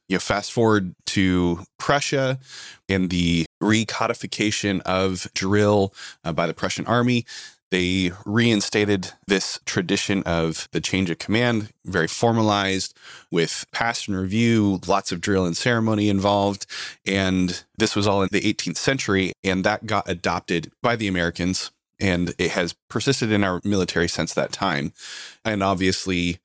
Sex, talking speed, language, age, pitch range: male, 140 wpm, English, 20-39, 90-110 Hz